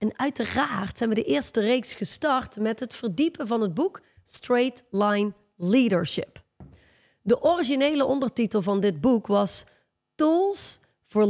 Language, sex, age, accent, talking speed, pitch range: Dutch, female, 30-49, Dutch, 140 wpm, 205-275 Hz